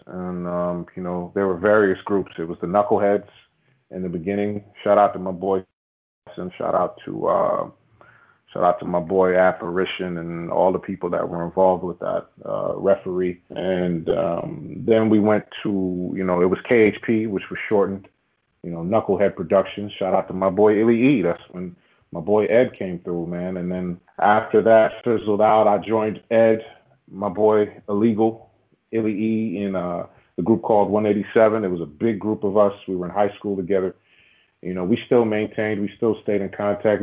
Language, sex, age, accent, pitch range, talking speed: English, male, 30-49, American, 90-105 Hz, 190 wpm